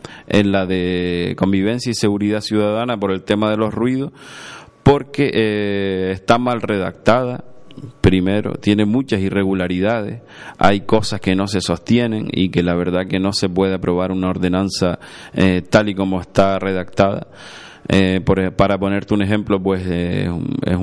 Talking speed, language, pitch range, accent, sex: 155 wpm, Spanish, 95-105 Hz, Argentinian, male